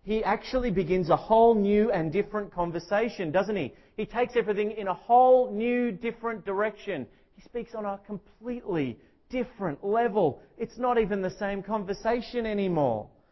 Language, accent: English, Australian